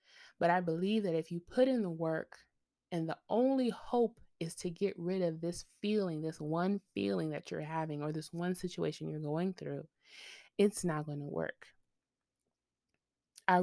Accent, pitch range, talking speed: American, 165-220 Hz, 175 wpm